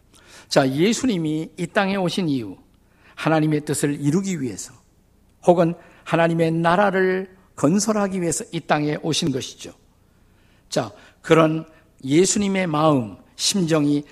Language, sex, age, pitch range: Korean, male, 50-69, 135-180 Hz